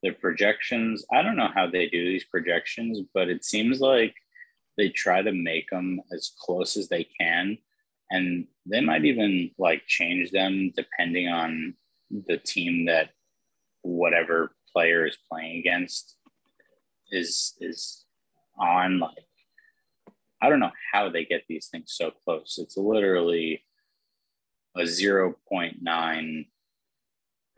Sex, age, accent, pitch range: male, 30-49, American, 85-105 Hz